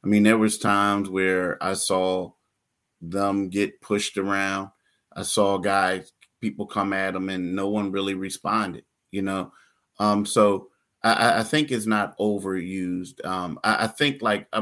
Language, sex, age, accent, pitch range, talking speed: English, male, 30-49, American, 95-115 Hz, 160 wpm